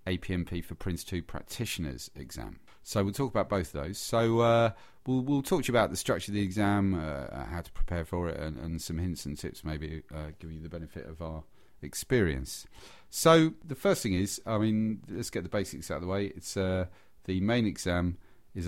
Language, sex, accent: English, male, British